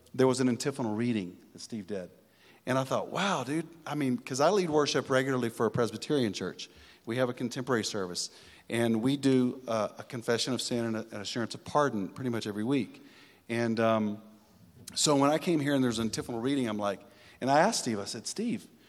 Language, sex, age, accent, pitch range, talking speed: English, male, 40-59, American, 115-150 Hz, 215 wpm